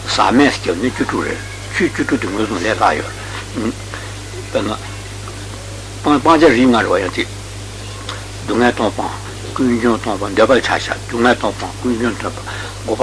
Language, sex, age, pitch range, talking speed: Italian, male, 60-79, 100-120 Hz, 100 wpm